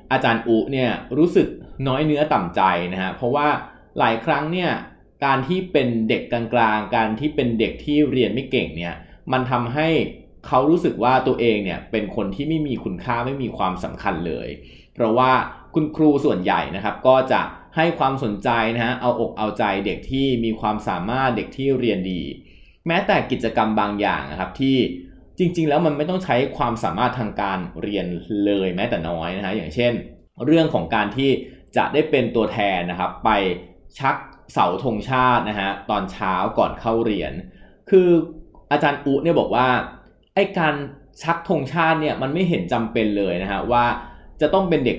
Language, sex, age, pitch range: Thai, male, 20-39, 105-150 Hz